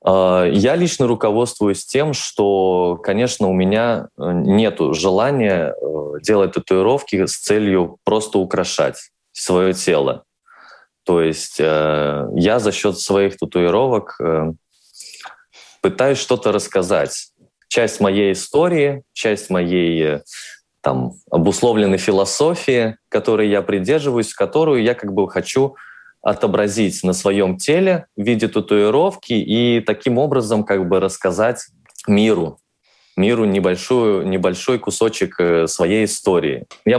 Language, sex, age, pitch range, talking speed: Russian, male, 20-39, 85-110 Hz, 105 wpm